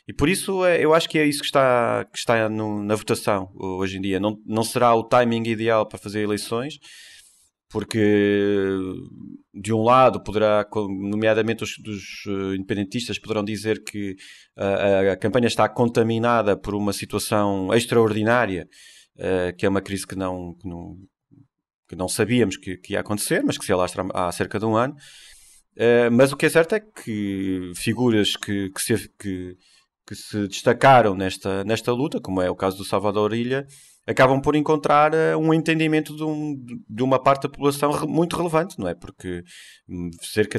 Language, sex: Portuguese, male